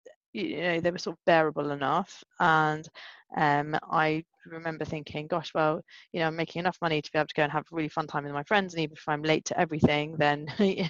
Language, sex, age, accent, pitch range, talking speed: English, female, 30-49, British, 150-175 Hz, 235 wpm